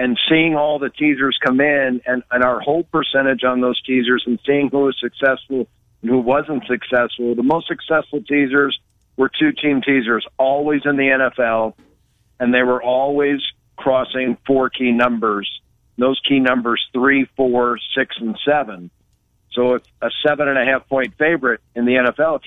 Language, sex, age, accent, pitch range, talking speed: English, male, 50-69, American, 125-150 Hz, 160 wpm